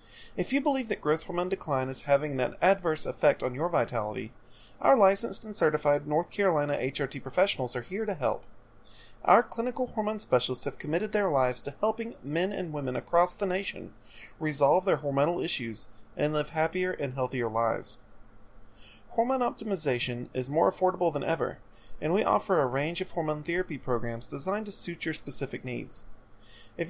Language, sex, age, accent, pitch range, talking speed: English, male, 30-49, American, 120-185 Hz, 170 wpm